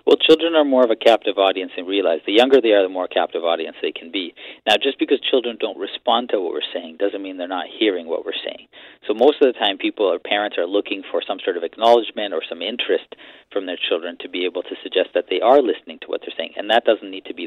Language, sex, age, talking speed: English, male, 40-59, 270 wpm